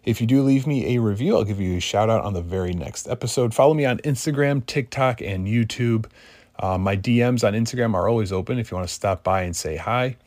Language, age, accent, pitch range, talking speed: English, 30-49, American, 95-125 Hz, 245 wpm